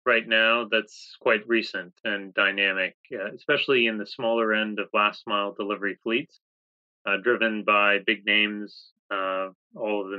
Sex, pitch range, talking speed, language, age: male, 95-110 Hz, 155 wpm, English, 30-49